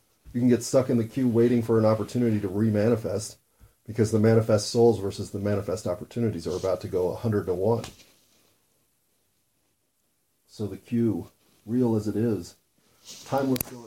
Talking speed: 160 wpm